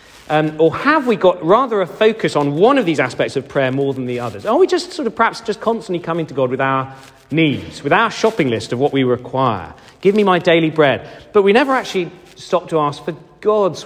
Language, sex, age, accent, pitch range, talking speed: English, male, 40-59, British, 120-195 Hz, 240 wpm